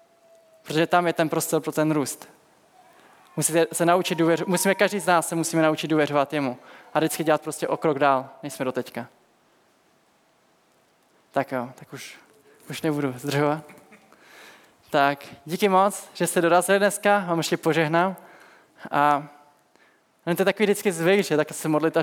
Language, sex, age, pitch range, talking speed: Czech, male, 20-39, 155-200 Hz, 160 wpm